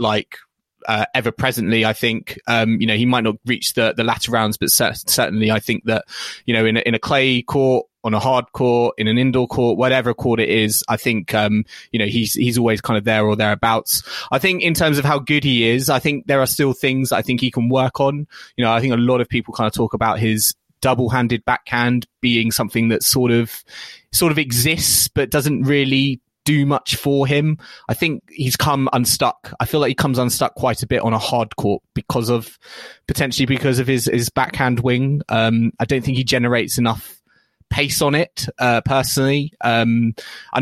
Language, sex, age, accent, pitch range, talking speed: English, male, 20-39, British, 115-135 Hz, 215 wpm